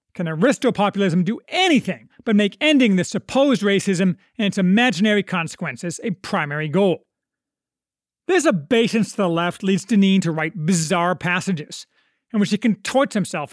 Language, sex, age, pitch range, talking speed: English, male, 40-59, 180-240 Hz, 145 wpm